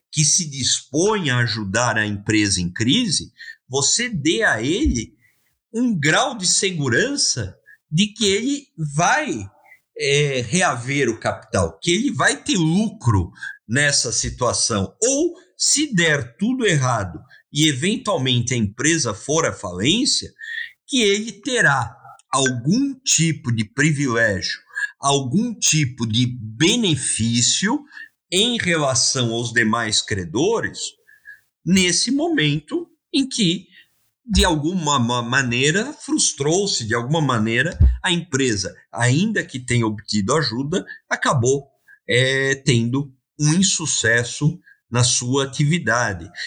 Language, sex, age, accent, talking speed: Portuguese, male, 50-69, Brazilian, 110 wpm